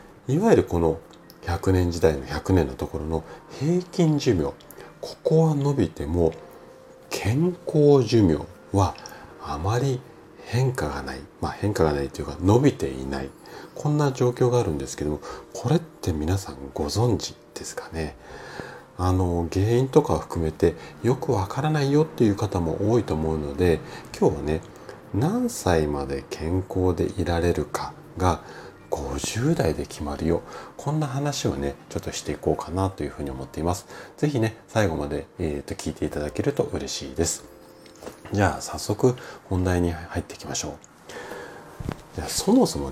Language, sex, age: Japanese, male, 40-59